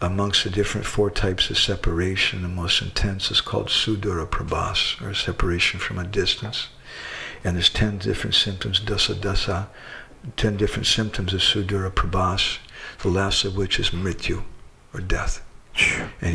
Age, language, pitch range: 50-69, English, 90-105 Hz